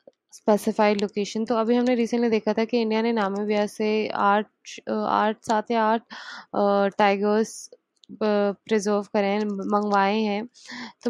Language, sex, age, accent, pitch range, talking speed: English, female, 20-39, Indian, 200-225 Hz, 130 wpm